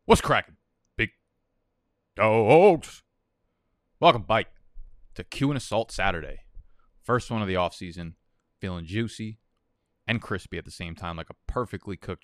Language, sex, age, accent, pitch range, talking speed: English, male, 20-39, American, 90-110 Hz, 135 wpm